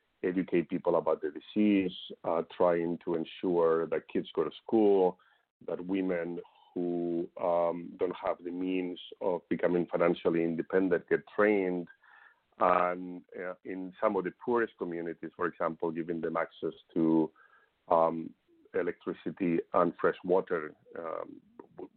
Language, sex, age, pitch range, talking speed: English, male, 50-69, 85-100 Hz, 130 wpm